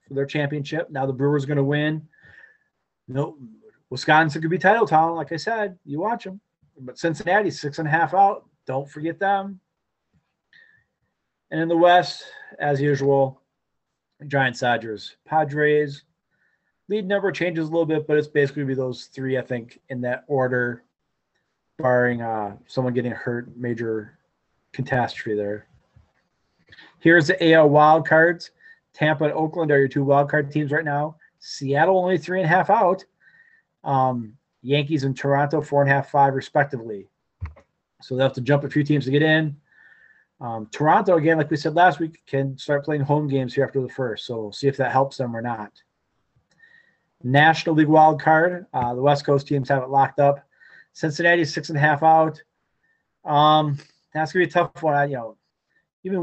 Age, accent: 30-49, American